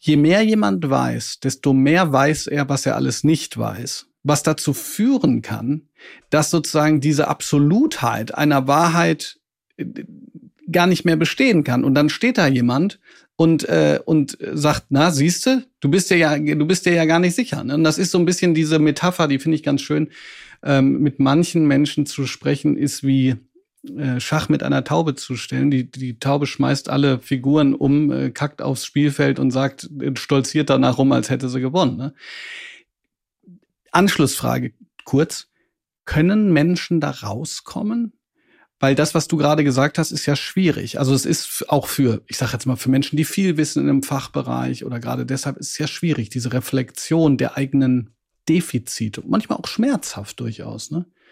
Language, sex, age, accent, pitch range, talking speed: German, male, 40-59, German, 135-165 Hz, 175 wpm